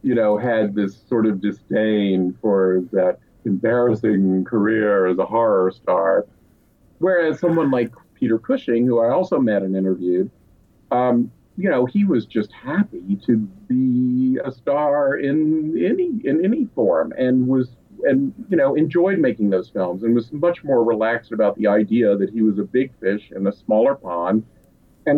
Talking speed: 165 wpm